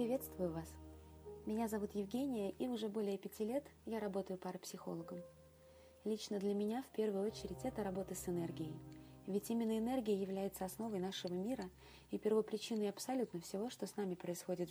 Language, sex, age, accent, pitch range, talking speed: Russian, female, 20-39, native, 175-215 Hz, 155 wpm